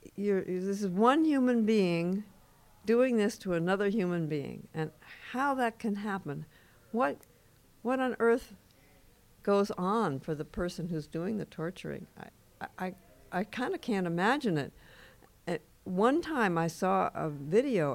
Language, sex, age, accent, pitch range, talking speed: English, female, 60-79, American, 150-205 Hz, 150 wpm